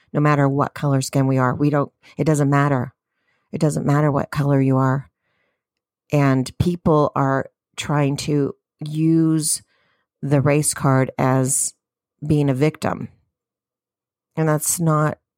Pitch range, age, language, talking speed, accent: 140-170 Hz, 40-59, English, 135 wpm, American